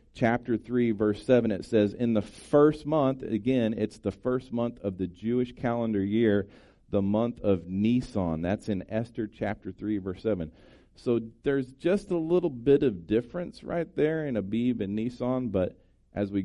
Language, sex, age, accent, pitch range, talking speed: English, male, 40-59, American, 90-115 Hz, 175 wpm